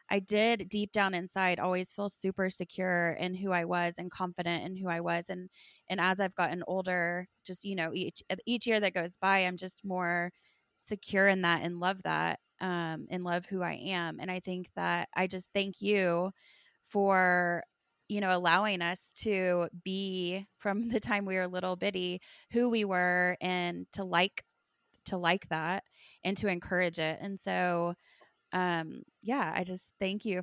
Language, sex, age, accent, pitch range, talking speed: English, female, 20-39, American, 175-190 Hz, 180 wpm